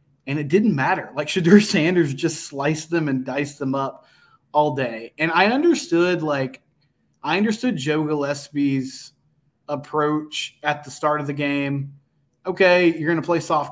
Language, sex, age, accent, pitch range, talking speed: English, male, 20-39, American, 130-155 Hz, 160 wpm